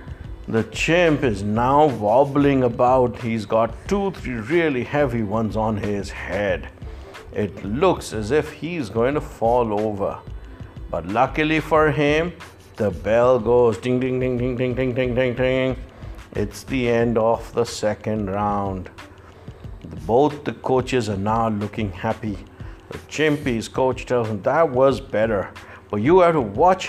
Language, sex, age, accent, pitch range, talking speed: English, male, 60-79, Indian, 110-155 Hz, 155 wpm